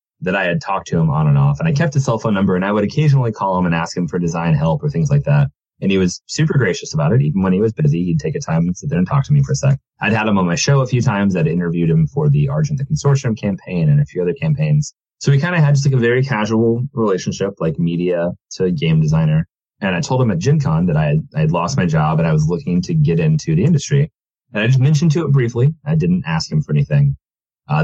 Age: 30-49